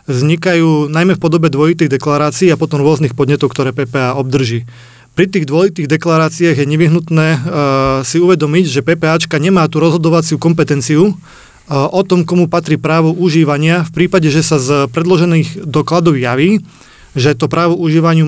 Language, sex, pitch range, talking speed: Slovak, male, 150-175 Hz, 155 wpm